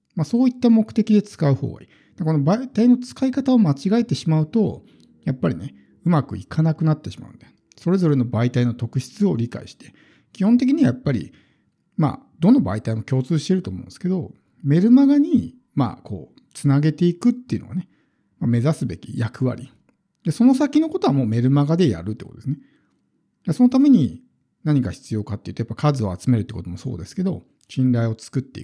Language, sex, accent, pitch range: Japanese, male, native, 115-180 Hz